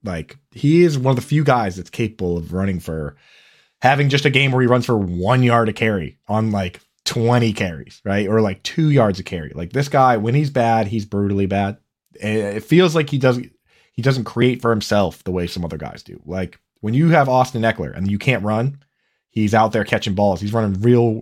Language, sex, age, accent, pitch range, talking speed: English, male, 20-39, American, 95-125 Hz, 225 wpm